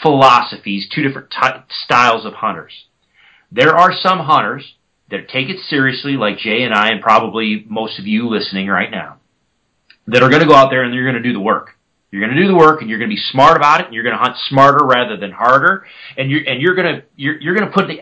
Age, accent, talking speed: 40-59, American, 255 wpm